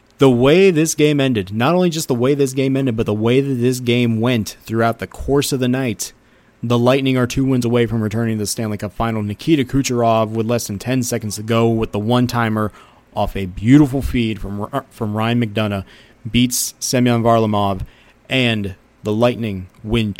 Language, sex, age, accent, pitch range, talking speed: English, male, 30-49, American, 110-130 Hz, 200 wpm